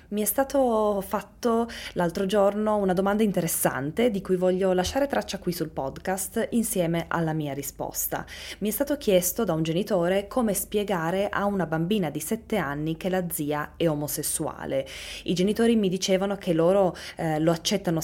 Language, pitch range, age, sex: Italian, 160-210 Hz, 20-39, female